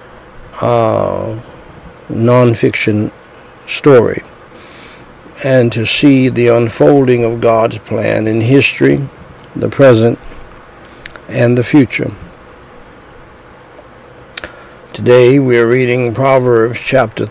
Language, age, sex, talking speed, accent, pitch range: English, 60-79, male, 80 wpm, American, 115-125 Hz